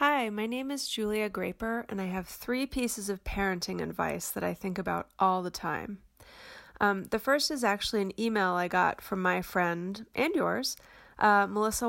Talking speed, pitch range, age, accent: 185 wpm, 180-210 Hz, 30-49, American